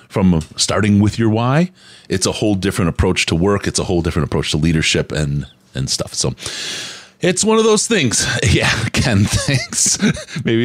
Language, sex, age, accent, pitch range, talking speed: English, male, 30-49, American, 90-130 Hz, 180 wpm